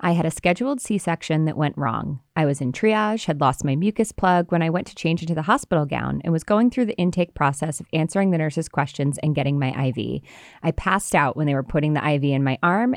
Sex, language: female, English